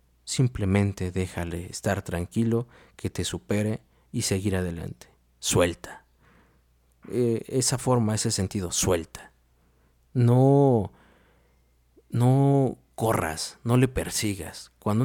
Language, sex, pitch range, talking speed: Spanish, male, 95-130 Hz, 95 wpm